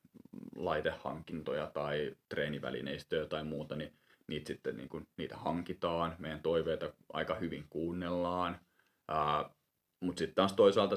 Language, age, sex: Finnish, 30-49, male